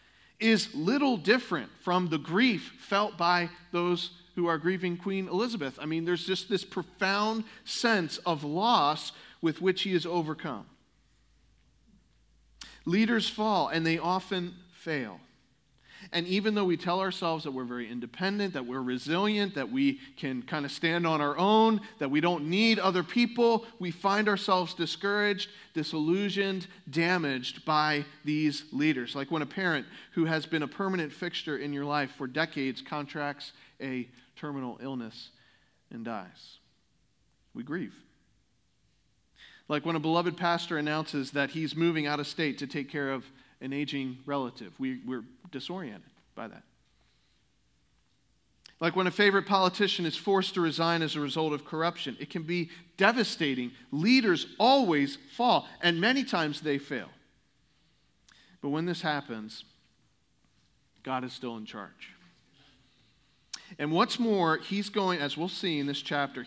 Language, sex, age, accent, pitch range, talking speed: English, male, 40-59, American, 145-190 Hz, 150 wpm